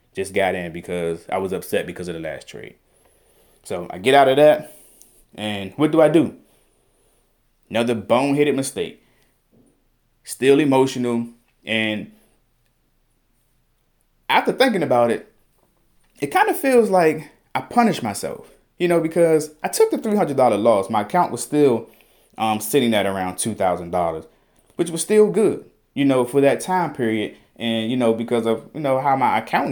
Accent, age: American, 20-39